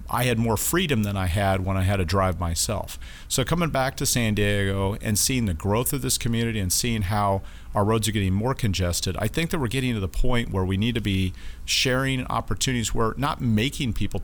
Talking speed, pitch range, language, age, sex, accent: 230 wpm, 95-120 Hz, English, 40-59, male, American